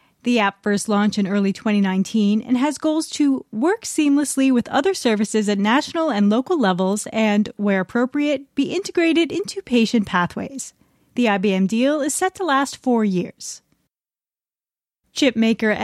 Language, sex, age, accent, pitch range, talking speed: English, female, 30-49, American, 210-285 Hz, 150 wpm